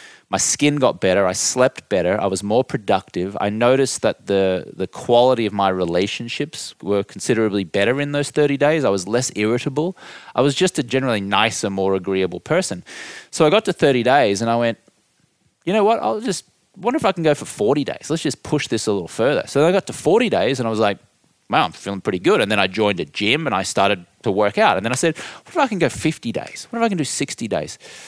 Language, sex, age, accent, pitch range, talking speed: English, male, 20-39, Australian, 100-140 Hz, 245 wpm